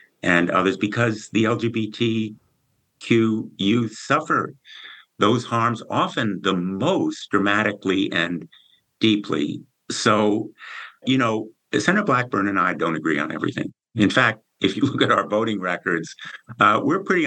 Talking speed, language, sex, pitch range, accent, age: 135 wpm, English, male, 90-115 Hz, American, 50-69